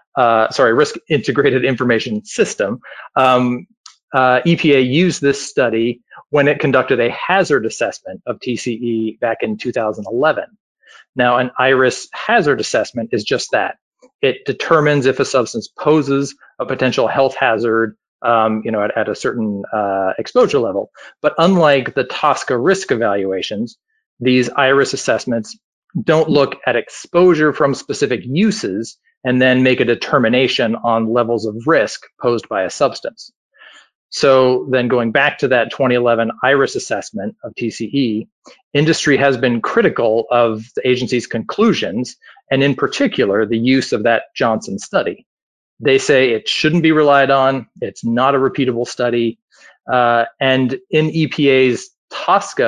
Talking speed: 145 wpm